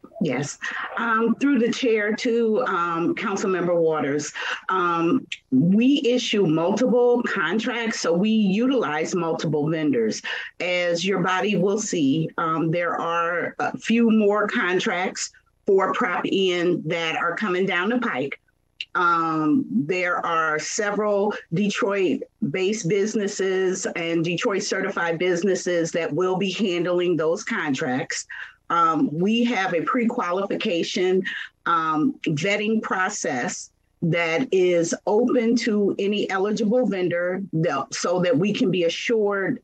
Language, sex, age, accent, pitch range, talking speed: English, female, 40-59, American, 170-225 Hz, 120 wpm